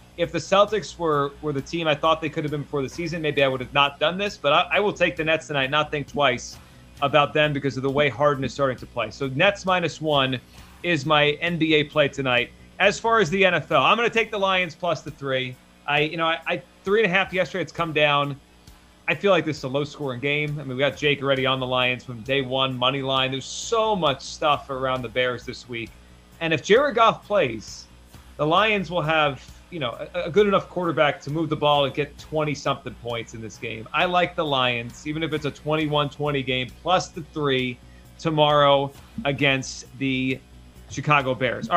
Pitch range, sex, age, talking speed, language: 130-175 Hz, male, 30-49, 230 wpm, English